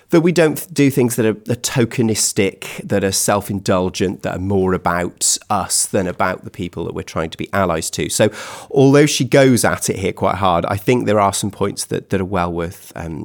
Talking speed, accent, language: 215 wpm, British, English